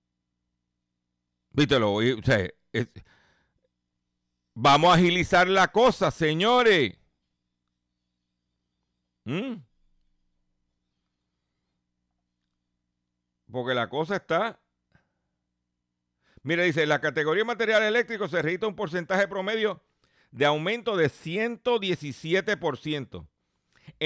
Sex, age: male, 50-69